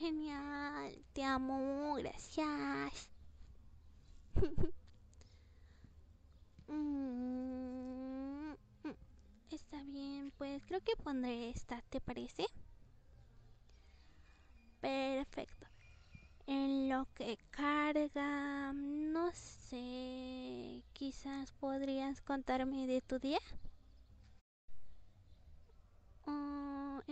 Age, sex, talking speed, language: 20-39, female, 60 wpm, Portuguese